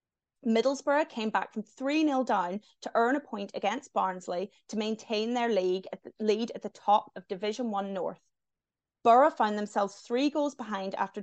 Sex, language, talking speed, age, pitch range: female, English, 165 wpm, 30-49, 195-255 Hz